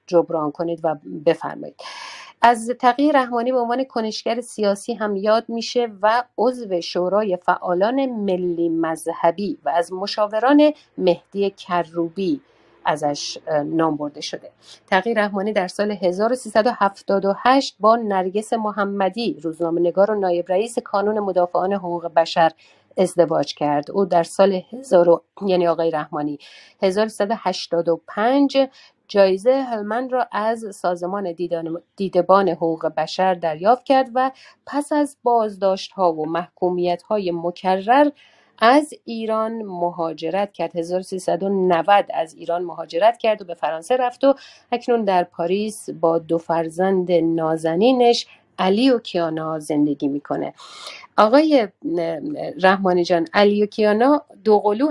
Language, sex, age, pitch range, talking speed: Persian, female, 50-69, 170-230 Hz, 115 wpm